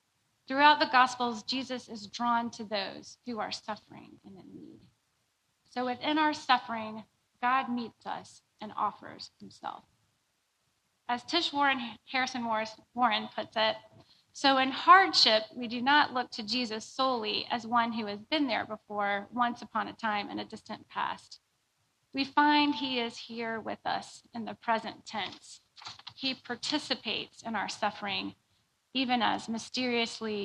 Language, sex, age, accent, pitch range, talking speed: English, female, 30-49, American, 220-265 Hz, 150 wpm